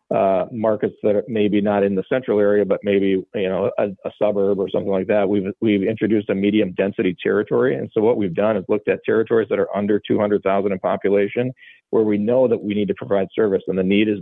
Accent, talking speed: American, 235 wpm